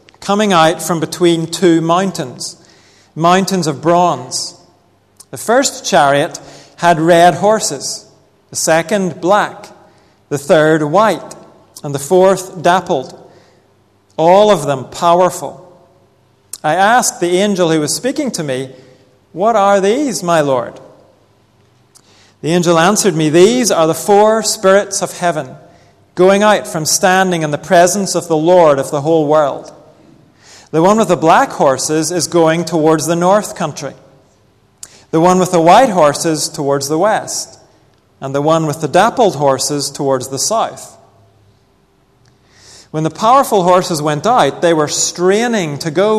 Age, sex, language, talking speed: 40-59, male, English, 145 wpm